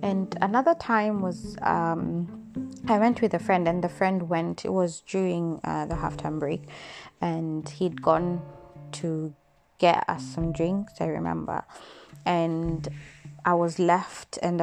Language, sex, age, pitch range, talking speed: English, female, 20-39, 150-180 Hz, 150 wpm